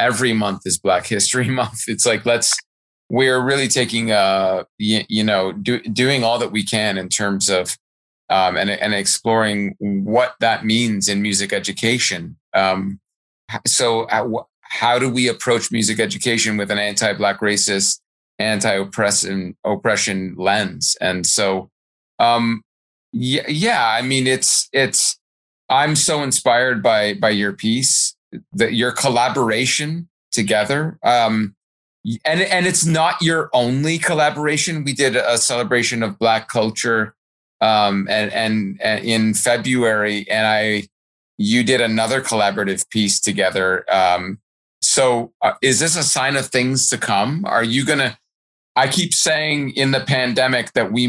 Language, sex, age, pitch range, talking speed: English, male, 30-49, 100-125 Hz, 140 wpm